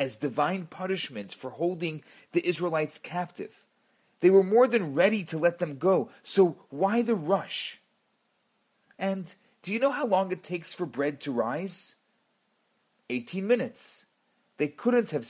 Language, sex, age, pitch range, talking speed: English, male, 40-59, 140-195 Hz, 150 wpm